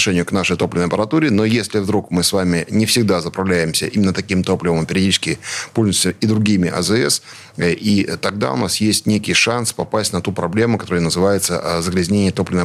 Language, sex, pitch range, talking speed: Russian, male, 90-110 Hz, 170 wpm